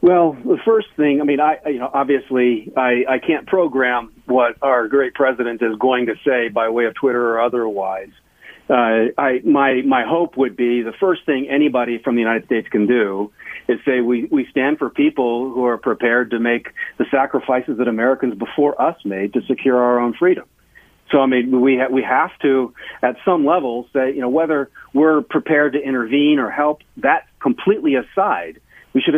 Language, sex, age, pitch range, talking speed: English, male, 40-59, 125-150 Hz, 195 wpm